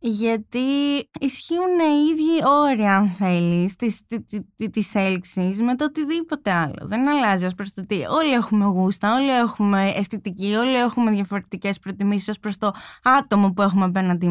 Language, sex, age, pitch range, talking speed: Greek, female, 20-39, 185-240 Hz, 150 wpm